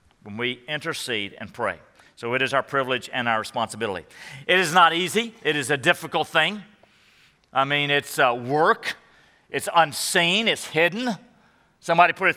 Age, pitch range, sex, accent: 50-69, 135-185 Hz, male, American